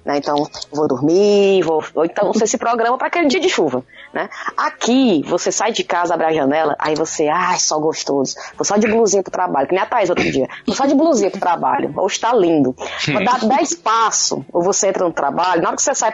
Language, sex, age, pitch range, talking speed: Portuguese, female, 20-39, 180-275 Hz, 240 wpm